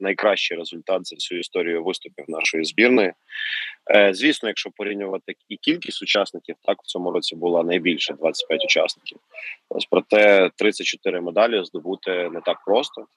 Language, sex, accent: Ukrainian, male, native